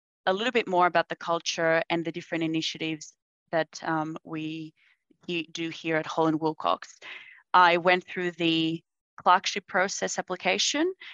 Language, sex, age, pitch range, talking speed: English, female, 20-39, 160-175 Hz, 135 wpm